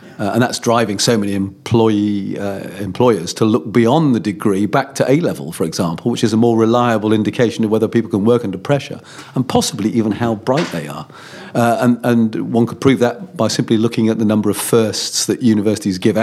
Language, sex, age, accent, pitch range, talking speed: English, male, 40-59, British, 105-135 Hz, 210 wpm